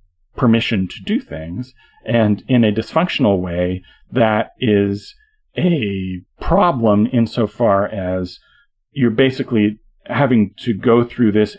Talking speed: 115 wpm